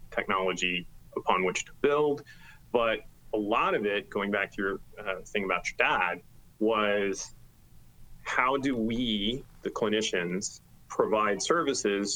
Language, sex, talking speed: English, male, 135 wpm